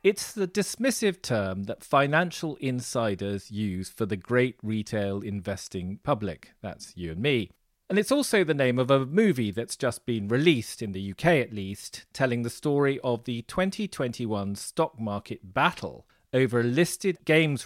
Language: English